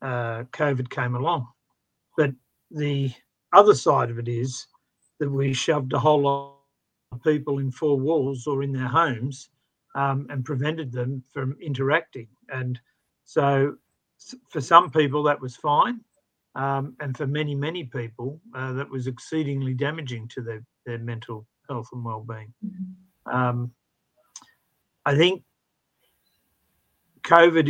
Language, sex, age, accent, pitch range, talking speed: English, male, 50-69, Australian, 130-155 Hz, 135 wpm